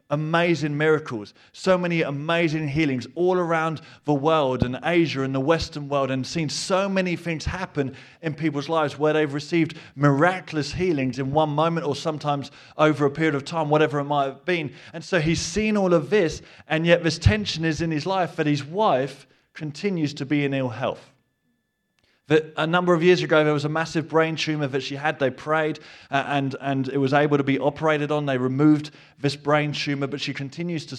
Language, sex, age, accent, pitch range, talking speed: English, male, 30-49, British, 140-165 Hz, 200 wpm